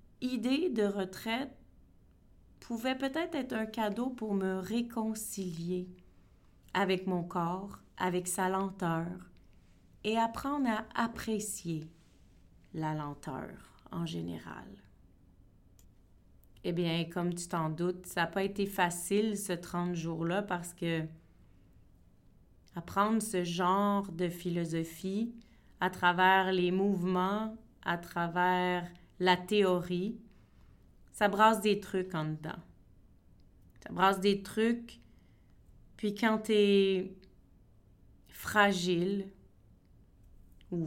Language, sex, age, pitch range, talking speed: French, female, 30-49, 160-205 Hz, 105 wpm